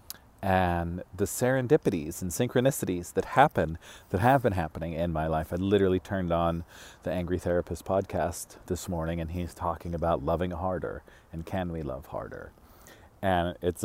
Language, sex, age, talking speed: English, male, 40-59, 160 wpm